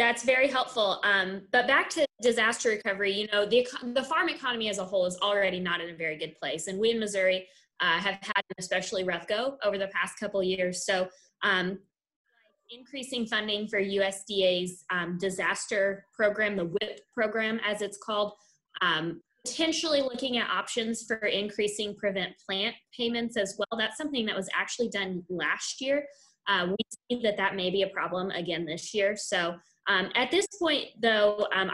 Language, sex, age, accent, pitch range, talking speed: English, female, 20-39, American, 180-220 Hz, 185 wpm